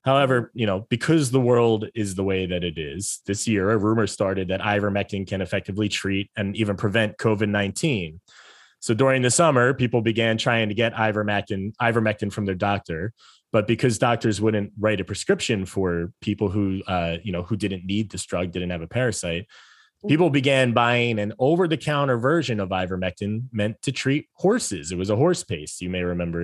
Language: English